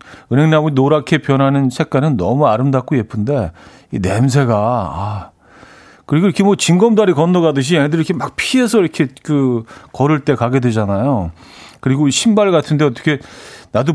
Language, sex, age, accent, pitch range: Korean, male, 40-59, native, 115-160 Hz